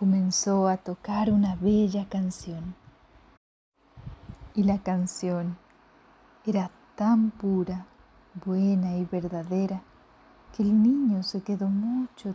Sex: female